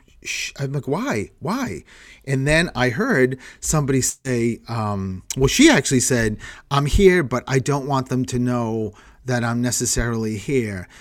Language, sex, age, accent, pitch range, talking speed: English, male, 40-59, American, 115-140 Hz, 155 wpm